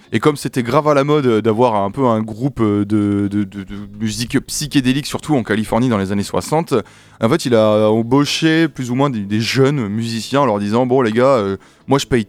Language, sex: French, male